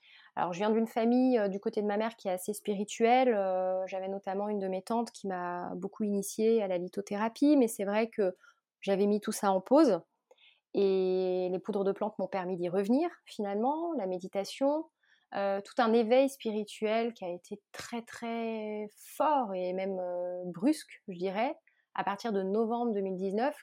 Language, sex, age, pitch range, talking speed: French, female, 30-49, 190-230 Hz, 185 wpm